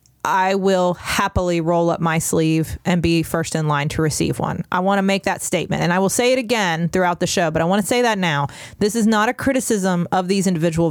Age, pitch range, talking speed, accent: 30-49, 170-205 Hz, 250 wpm, American